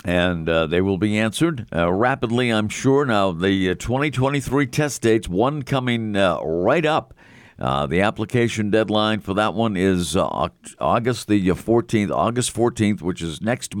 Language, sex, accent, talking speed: English, male, American, 165 wpm